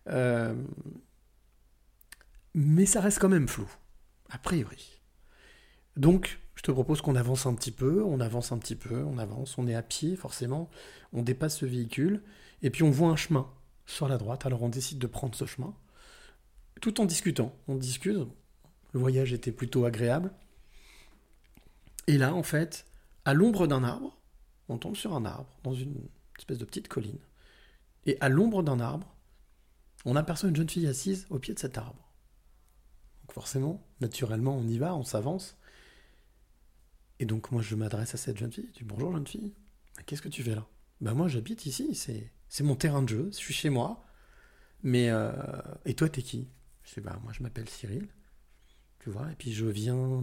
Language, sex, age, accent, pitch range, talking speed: French, male, 40-59, French, 115-150 Hz, 185 wpm